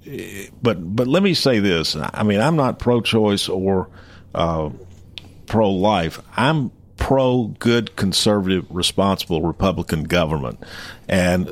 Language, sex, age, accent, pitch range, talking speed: English, male, 50-69, American, 85-105 Hz, 115 wpm